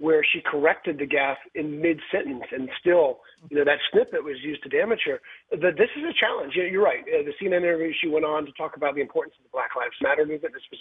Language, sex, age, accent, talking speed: English, male, 30-49, American, 245 wpm